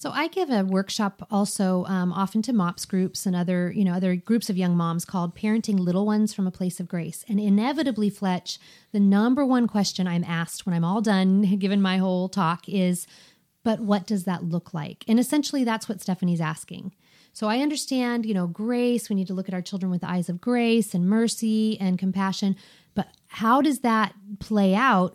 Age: 30-49